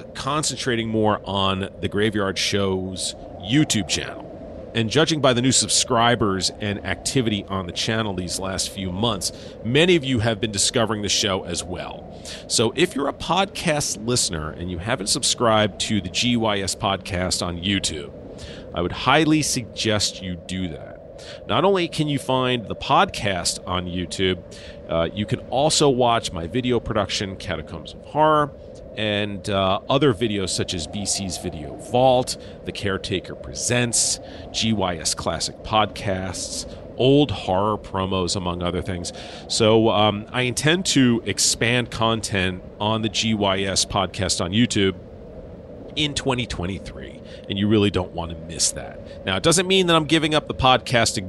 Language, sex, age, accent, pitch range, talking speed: English, male, 40-59, American, 90-120 Hz, 150 wpm